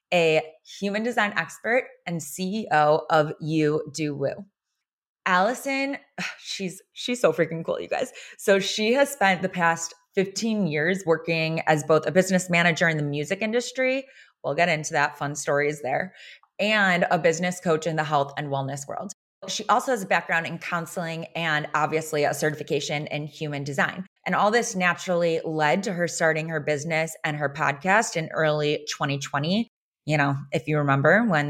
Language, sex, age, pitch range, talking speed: English, female, 20-39, 150-185 Hz, 170 wpm